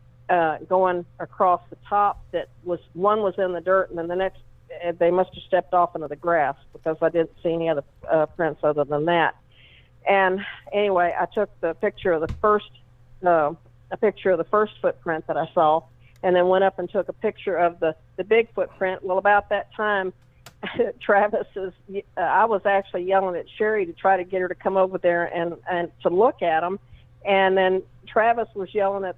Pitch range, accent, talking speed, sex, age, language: 165-195 Hz, American, 210 wpm, female, 50-69, English